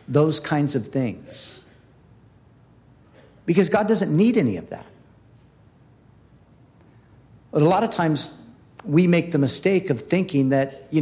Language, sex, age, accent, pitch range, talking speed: English, male, 50-69, American, 125-155 Hz, 130 wpm